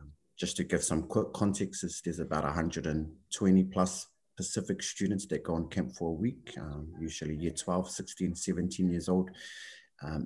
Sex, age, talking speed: male, 30-49, 170 wpm